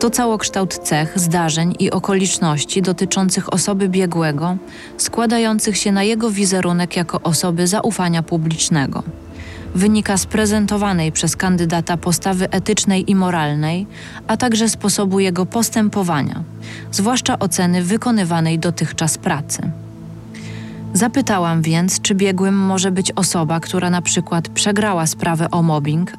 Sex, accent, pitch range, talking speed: female, native, 165-205 Hz, 115 wpm